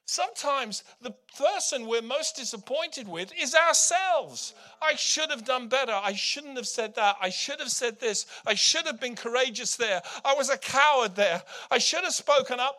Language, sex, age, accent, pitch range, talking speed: English, male, 50-69, British, 180-280 Hz, 190 wpm